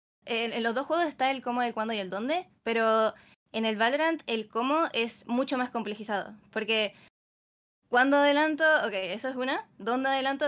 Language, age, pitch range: Spanish, 20-39, 220-270 Hz